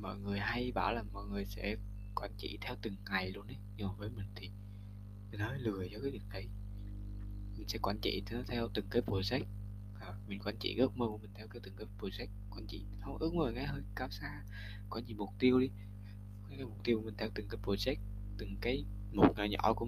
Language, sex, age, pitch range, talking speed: Vietnamese, male, 20-39, 100-105 Hz, 220 wpm